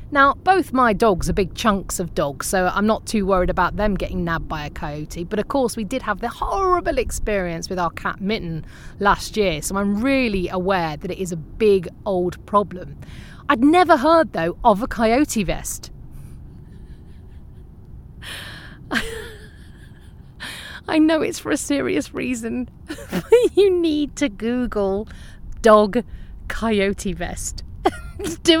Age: 30-49